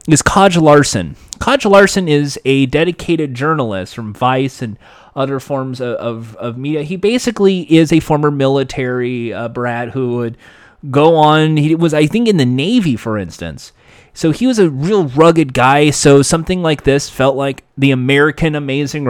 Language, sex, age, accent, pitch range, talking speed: English, male, 30-49, American, 125-160 Hz, 170 wpm